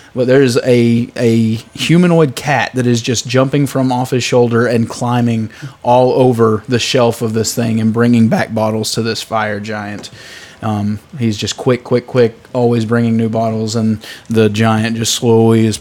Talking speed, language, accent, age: 180 wpm, English, American, 20-39